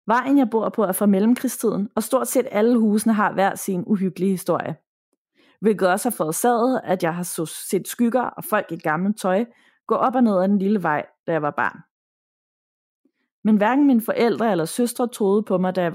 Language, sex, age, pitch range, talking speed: Danish, female, 30-49, 185-235 Hz, 205 wpm